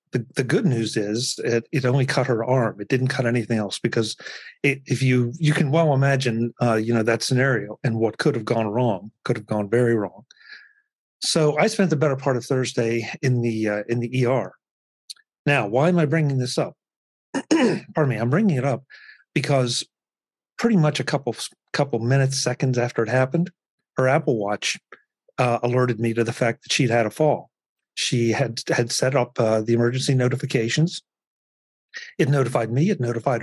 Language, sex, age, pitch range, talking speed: English, male, 40-59, 115-145 Hz, 190 wpm